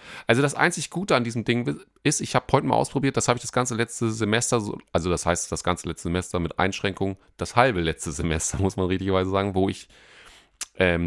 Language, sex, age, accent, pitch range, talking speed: German, male, 30-49, German, 90-110 Hz, 215 wpm